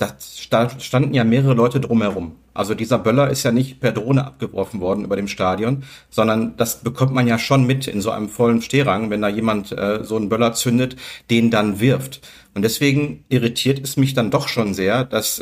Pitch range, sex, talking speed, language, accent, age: 110-125 Hz, male, 200 wpm, German, German, 50-69